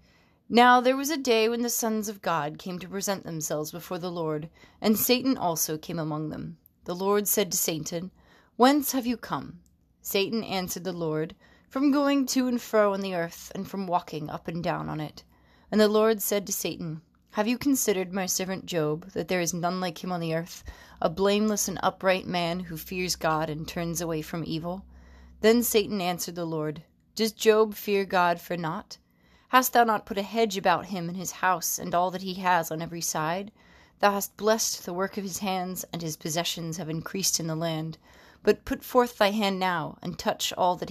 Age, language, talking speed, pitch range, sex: 30-49, English, 210 wpm, 165-210 Hz, female